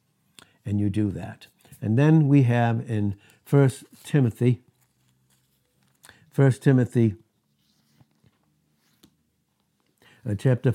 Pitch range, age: 110-135 Hz, 60-79